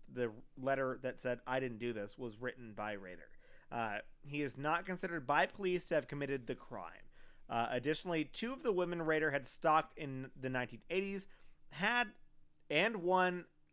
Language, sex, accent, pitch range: English, male, American, 130-175 Hz